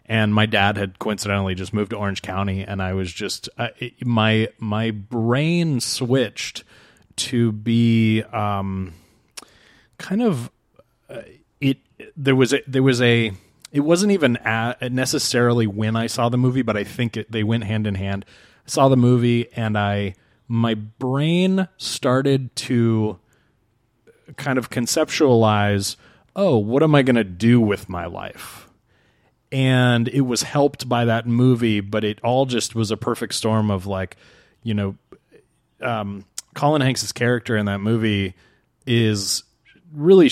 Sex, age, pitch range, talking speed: male, 30-49, 105-130 Hz, 150 wpm